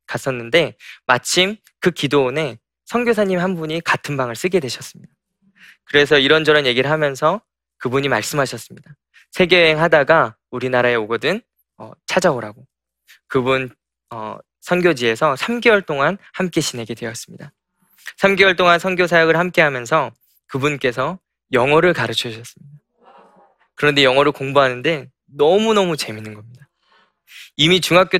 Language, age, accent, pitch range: Korean, 20-39, native, 125-175 Hz